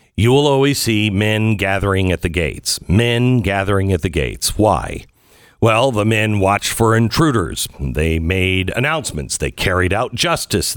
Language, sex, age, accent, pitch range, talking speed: English, male, 50-69, American, 95-130 Hz, 155 wpm